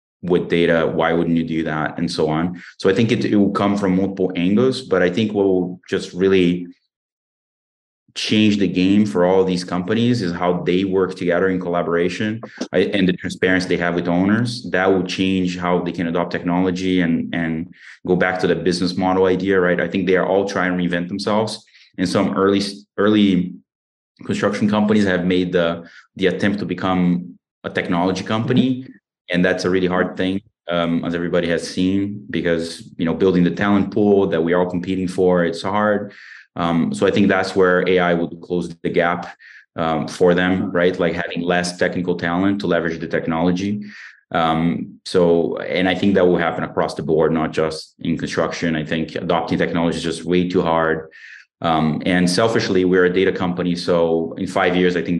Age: 20-39